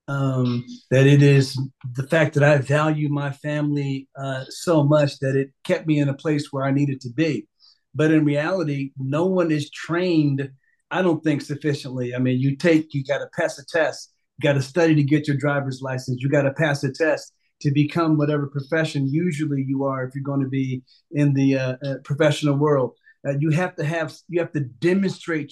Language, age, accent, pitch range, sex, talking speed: English, 40-59, American, 140-170 Hz, male, 205 wpm